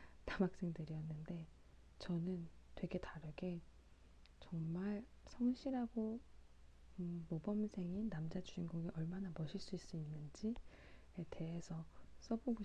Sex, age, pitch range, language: female, 20-39, 155-205 Hz, Korean